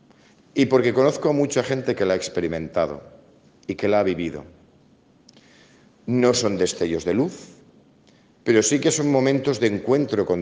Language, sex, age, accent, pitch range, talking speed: Spanish, male, 50-69, Spanish, 95-130 Hz, 160 wpm